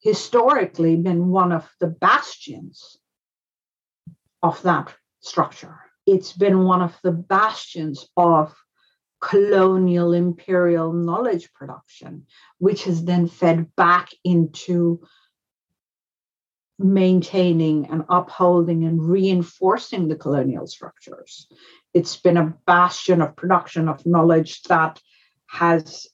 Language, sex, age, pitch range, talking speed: English, female, 50-69, 165-185 Hz, 100 wpm